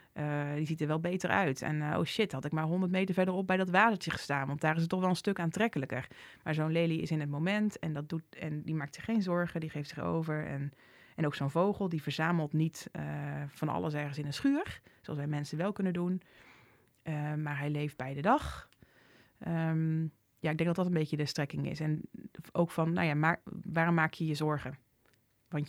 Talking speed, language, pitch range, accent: 235 wpm, Dutch, 140-170 Hz, Dutch